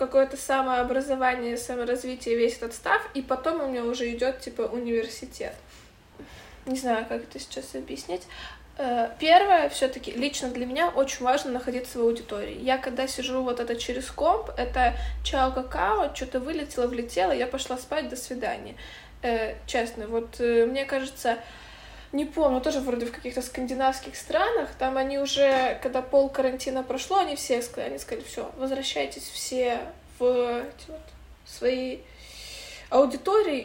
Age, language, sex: 20-39, Ukrainian, female